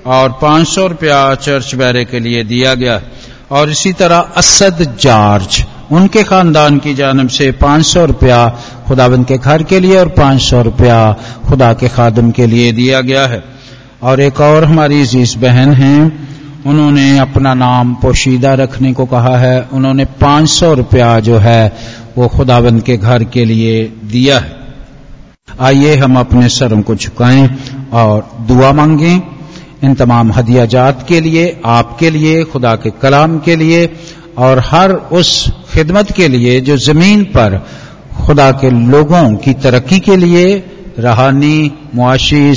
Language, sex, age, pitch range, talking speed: Hindi, male, 50-69, 120-145 Hz, 155 wpm